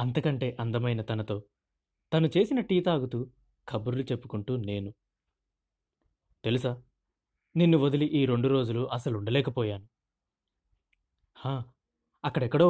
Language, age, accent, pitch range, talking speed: Telugu, 20-39, native, 105-140 Hz, 90 wpm